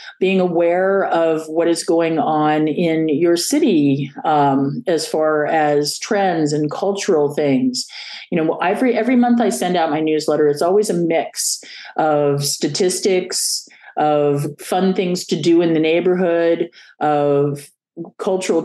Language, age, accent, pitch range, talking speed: English, 40-59, American, 155-205 Hz, 140 wpm